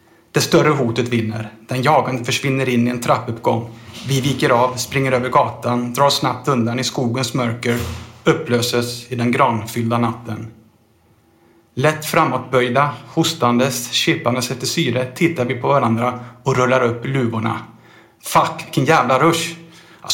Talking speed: 145 wpm